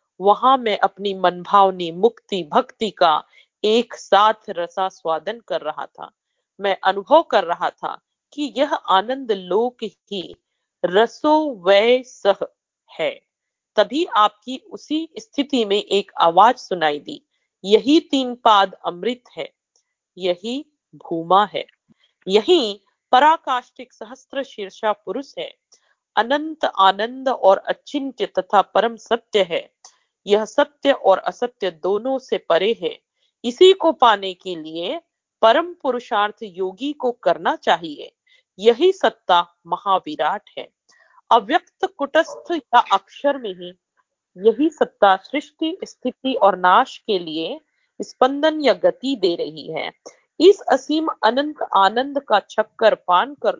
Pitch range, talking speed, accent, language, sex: 195-290 Hz, 120 wpm, native, Hindi, female